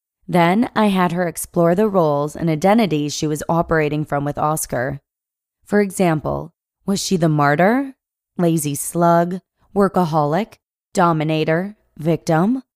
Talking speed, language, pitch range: 120 wpm, English, 155-195 Hz